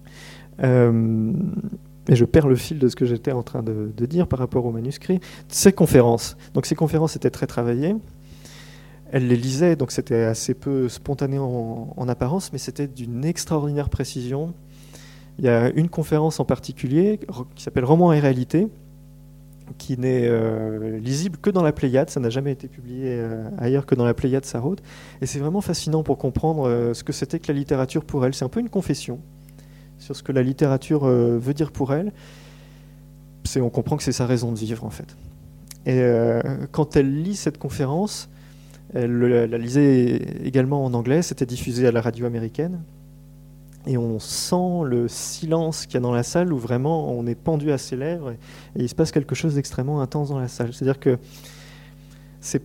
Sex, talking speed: male, 190 wpm